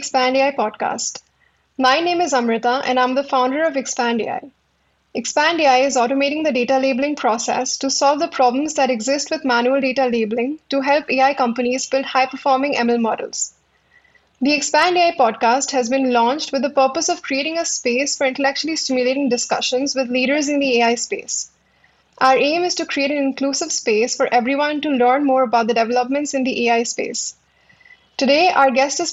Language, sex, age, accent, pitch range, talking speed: English, female, 10-29, Indian, 250-290 Hz, 180 wpm